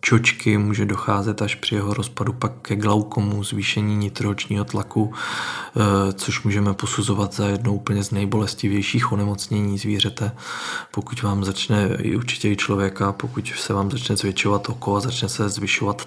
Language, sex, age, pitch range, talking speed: Czech, male, 20-39, 100-115 Hz, 145 wpm